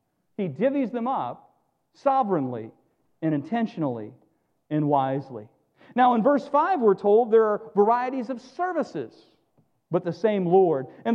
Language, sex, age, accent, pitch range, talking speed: English, male, 50-69, American, 195-295 Hz, 135 wpm